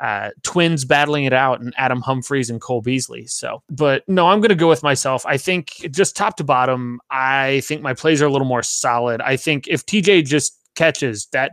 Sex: male